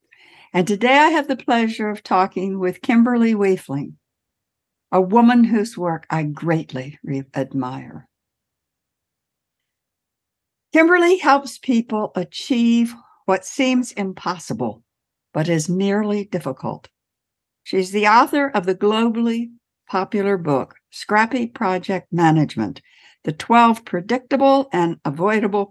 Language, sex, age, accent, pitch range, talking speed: English, female, 60-79, American, 165-235 Hz, 105 wpm